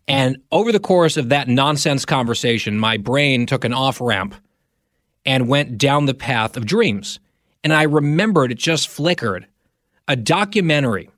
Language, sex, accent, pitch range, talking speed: English, male, American, 120-155 Hz, 150 wpm